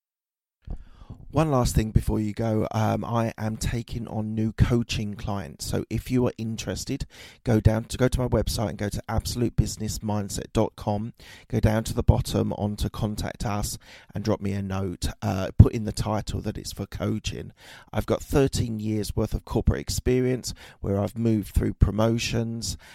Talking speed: 165 wpm